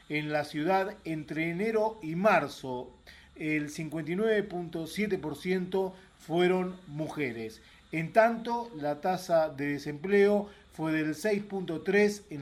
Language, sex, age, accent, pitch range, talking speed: Spanish, male, 40-59, Argentinian, 150-195 Hz, 100 wpm